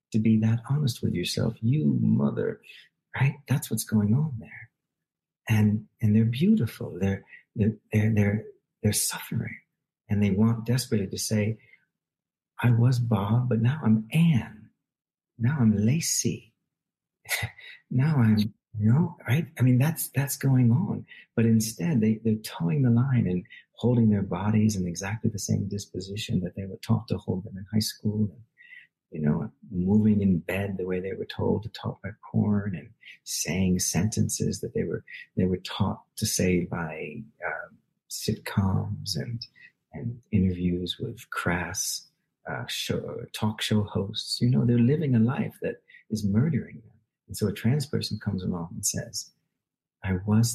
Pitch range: 100-120 Hz